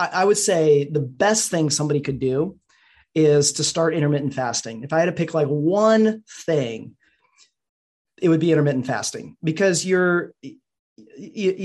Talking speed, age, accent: 155 wpm, 30-49, American